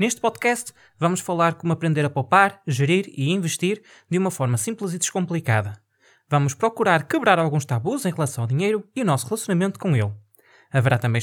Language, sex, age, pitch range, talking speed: Portuguese, male, 20-39, 135-200 Hz, 180 wpm